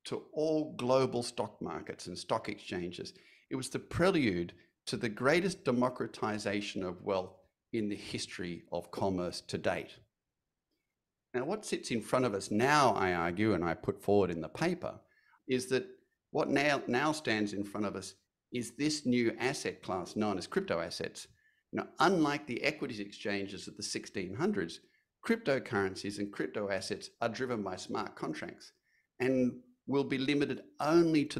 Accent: Australian